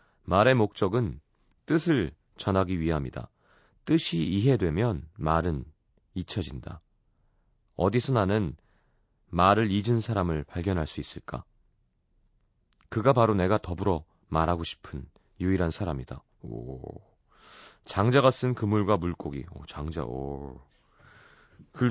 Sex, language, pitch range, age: male, Korean, 85-120 Hz, 30-49